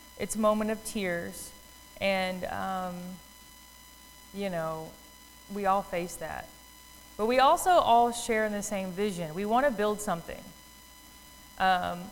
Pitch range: 185-250 Hz